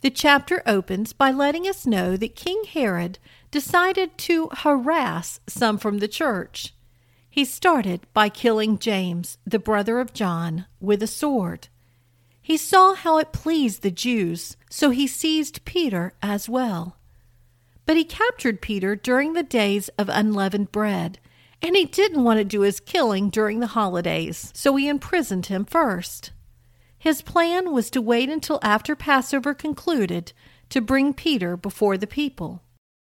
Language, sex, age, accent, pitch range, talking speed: English, female, 50-69, American, 195-295 Hz, 150 wpm